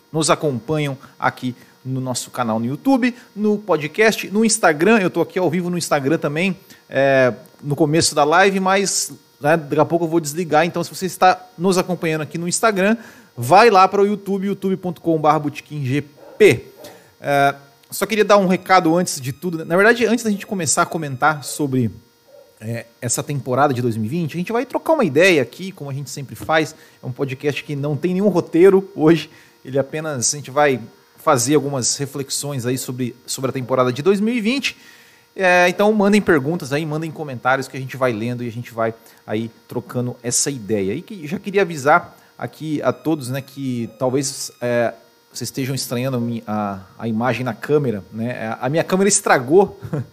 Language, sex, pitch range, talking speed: Portuguese, male, 130-175 Hz, 180 wpm